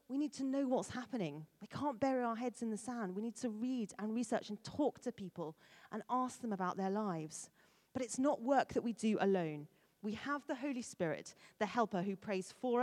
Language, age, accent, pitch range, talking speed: English, 40-59, British, 185-255 Hz, 225 wpm